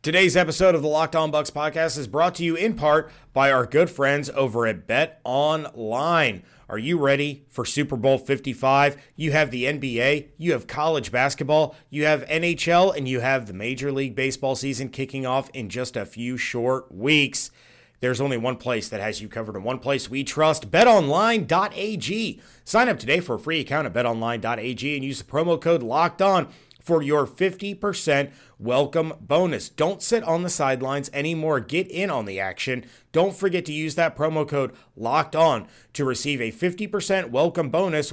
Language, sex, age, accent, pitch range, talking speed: English, male, 30-49, American, 130-165 Hz, 180 wpm